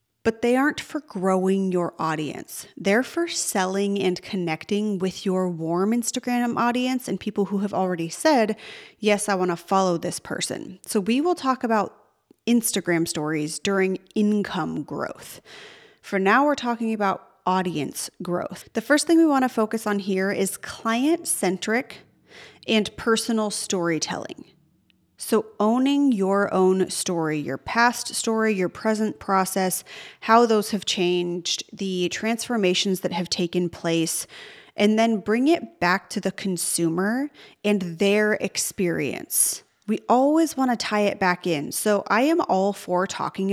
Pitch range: 185-230 Hz